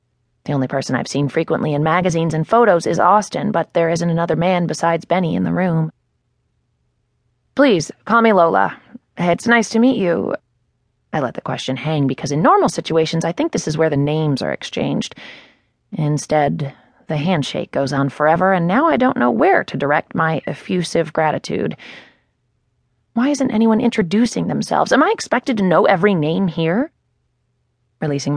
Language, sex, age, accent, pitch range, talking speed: English, female, 30-49, American, 140-195 Hz, 170 wpm